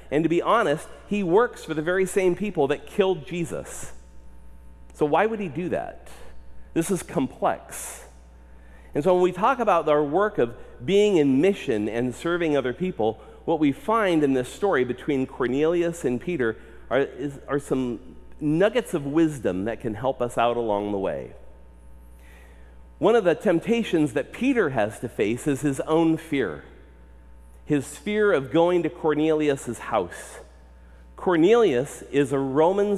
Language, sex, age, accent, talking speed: English, male, 40-59, American, 160 wpm